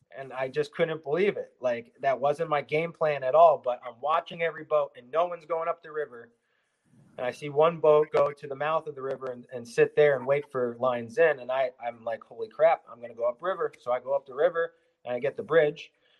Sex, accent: male, American